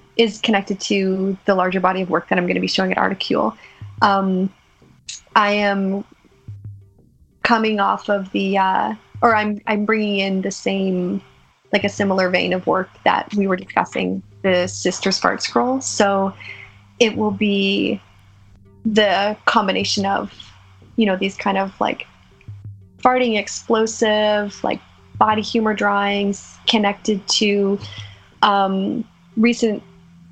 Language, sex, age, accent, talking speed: English, female, 20-39, American, 135 wpm